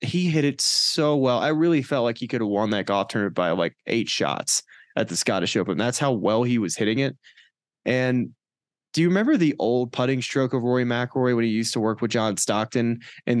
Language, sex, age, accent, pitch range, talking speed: English, male, 20-39, American, 115-135 Hz, 230 wpm